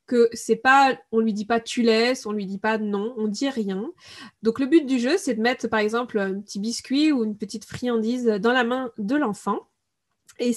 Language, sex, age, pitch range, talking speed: French, female, 20-39, 220-270 Hz, 250 wpm